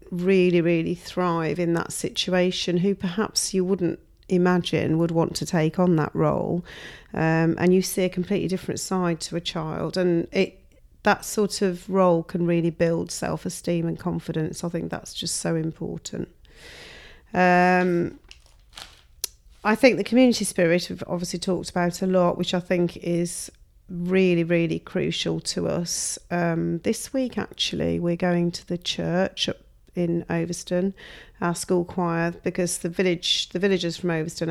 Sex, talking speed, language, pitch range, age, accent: female, 155 wpm, English, 165-180 Hz, 40-59, British